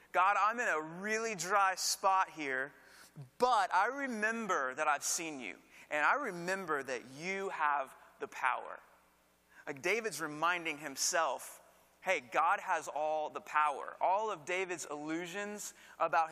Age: 30-49